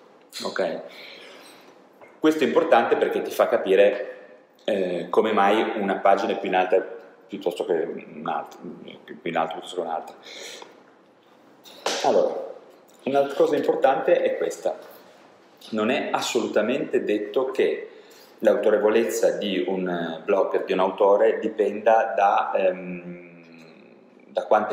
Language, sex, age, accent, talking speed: Italian, male, 30-49, native, 125 wpm